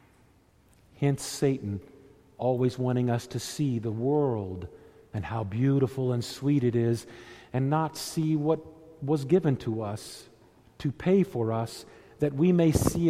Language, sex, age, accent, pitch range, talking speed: English, male, 50-69, American, 120-160 Hz, 145 wpm